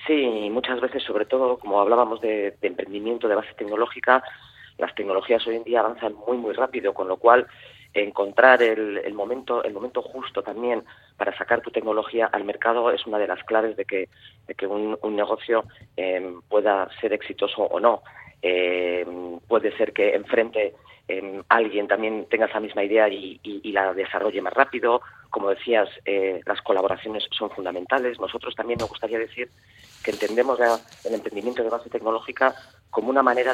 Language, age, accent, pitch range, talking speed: Spanish, 30-49, Spanish, 100-120 Hz, 170 wpm